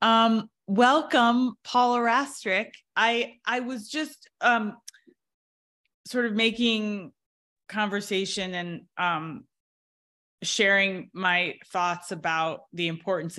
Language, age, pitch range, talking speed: English, 20-39, 155-205 Hz, 95 wpm